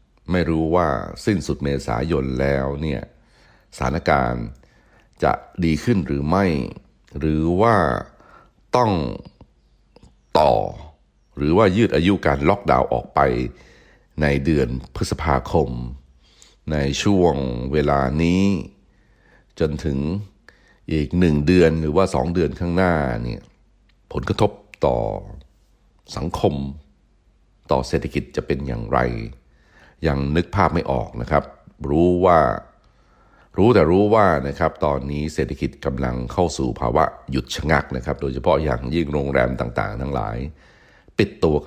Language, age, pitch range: Thai, 60-79, 65-80 Hz